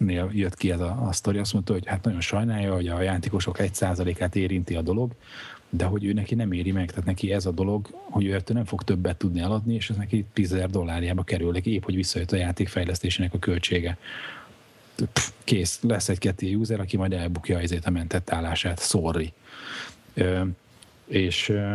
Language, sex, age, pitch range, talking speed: Hungarian, male, 30-49, 90-105 Hz, 180 wpm